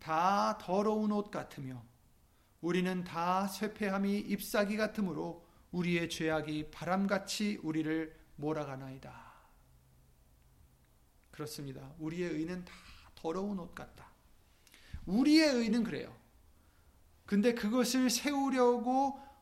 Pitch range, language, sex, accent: 130-195 Hz, Korean, male, native